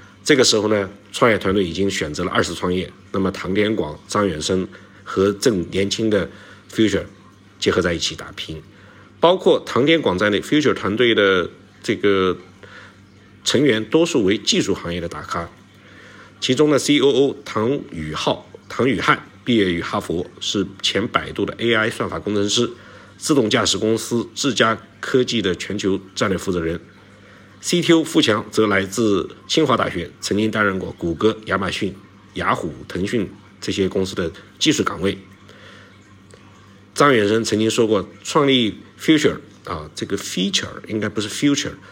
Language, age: Chinese, 50-69